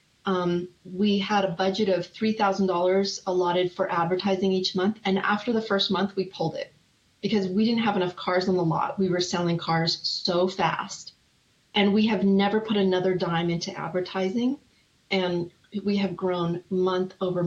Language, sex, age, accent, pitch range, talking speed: English, female, 30-49, American, 175-205 Hz, 170 wpm